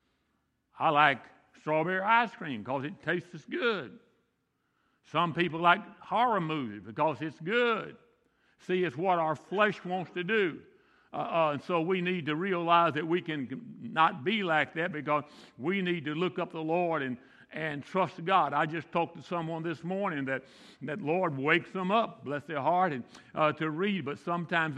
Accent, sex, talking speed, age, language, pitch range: American, male, 180 wpm, 60-79, English, 160-190 Hz